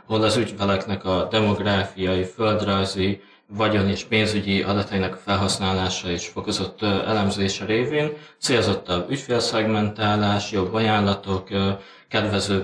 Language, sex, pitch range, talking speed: Hungarian, male, 95-110 Hz, 95 wpm